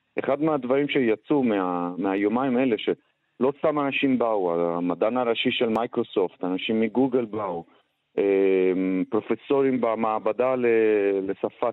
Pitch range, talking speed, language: 105-135 Hz, 105 wpm, Hebrew